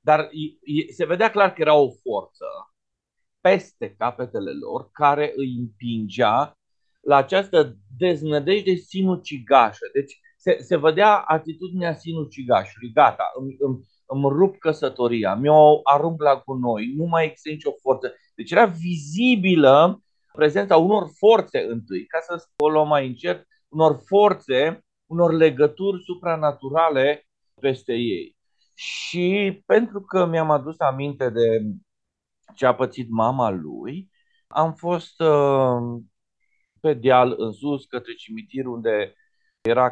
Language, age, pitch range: Romanian, 40-59, 130-175 Hz